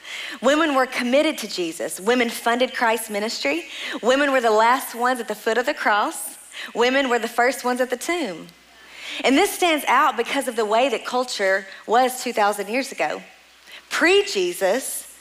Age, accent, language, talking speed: 40-59, American, English, 170 wpm